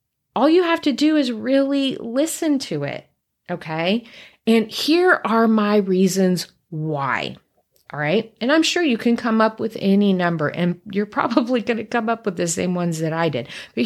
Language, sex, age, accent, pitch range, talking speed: English, female, 30-49, American, 175-250 Hz, 185 wpm